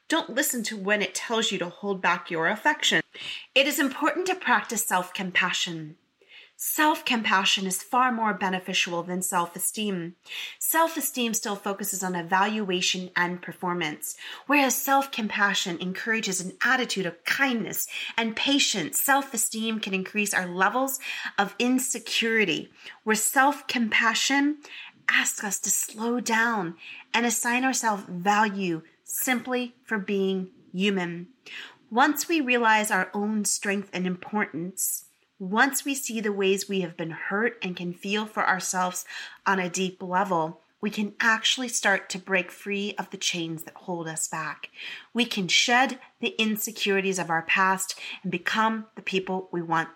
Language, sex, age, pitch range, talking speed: English, female, 30-49, 185-240 Hz, 140 wpm